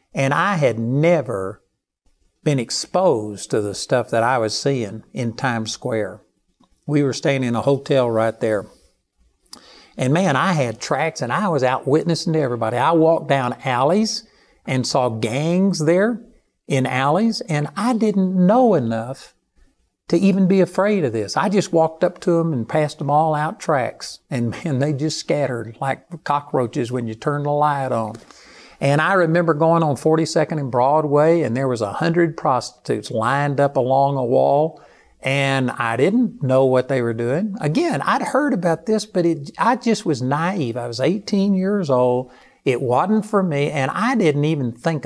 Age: 60-79